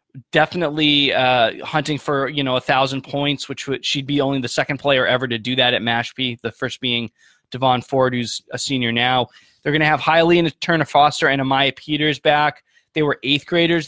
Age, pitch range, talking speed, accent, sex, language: 20-39, 130-155 Hz, 200 wpm, American, male, English